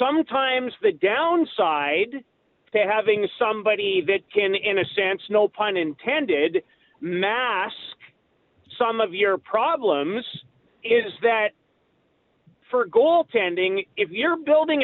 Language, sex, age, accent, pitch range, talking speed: English, male, 40-59, American, 205-275 Hz, 105 wpm